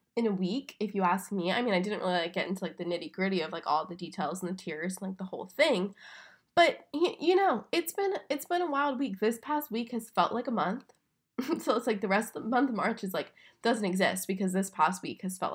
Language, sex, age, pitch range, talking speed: English, female, 10-29, 185-235 Hz, 265 wpm